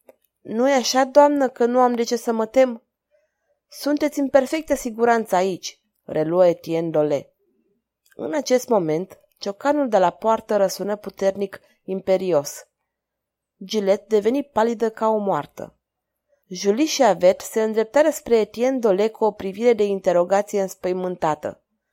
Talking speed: 135 wpm